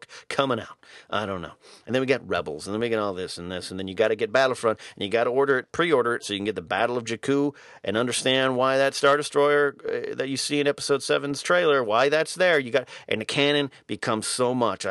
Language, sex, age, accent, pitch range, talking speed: English, male, 40-59, American, 110-145 Hz, 265 wpm